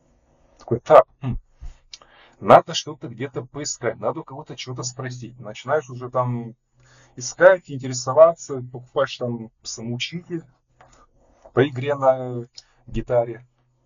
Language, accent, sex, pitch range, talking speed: Russian, native, male, 115-130 Hz, 95 wpm